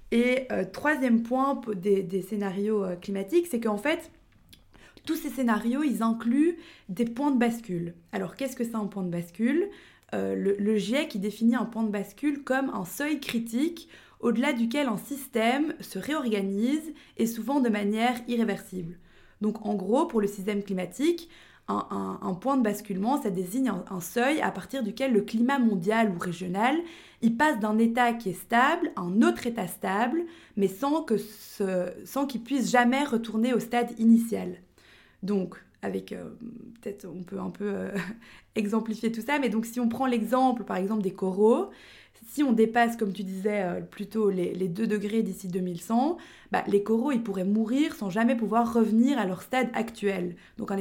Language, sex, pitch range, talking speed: French, female, 200-255 Hz, 180 wpm